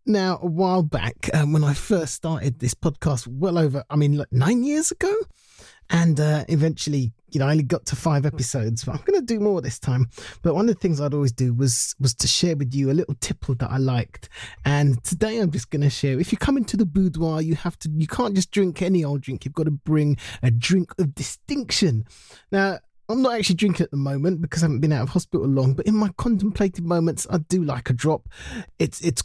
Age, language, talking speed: 20-39, English, 235 wpm